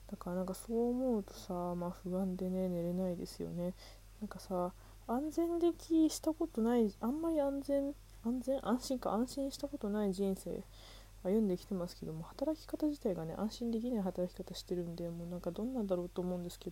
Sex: female